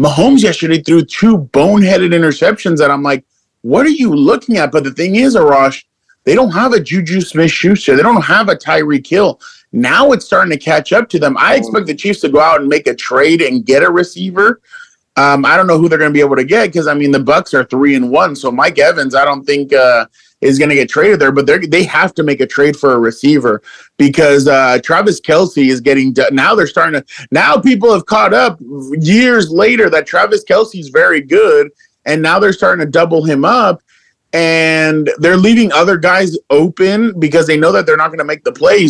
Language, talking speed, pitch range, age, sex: English, 225 wpm, 140-200 Hz, 30-49, male